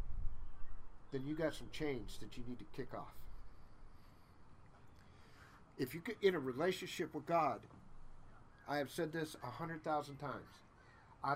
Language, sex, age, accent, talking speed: English, male, 50-69, American, 130 wpm